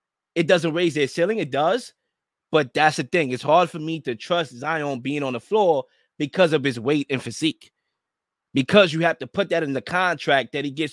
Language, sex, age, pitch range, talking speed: English, male, 20-39, 160-230 Hz, 220 wpm